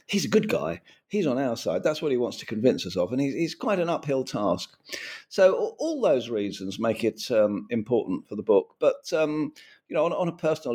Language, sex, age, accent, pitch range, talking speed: English, male, 50-69, British, 110-145 Hz, 235 wpm